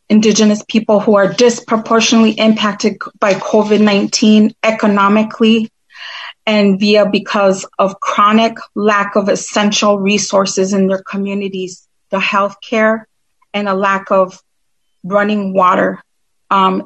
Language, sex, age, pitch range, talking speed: English, female, 30-49, 195-220 Hz, 110 wpm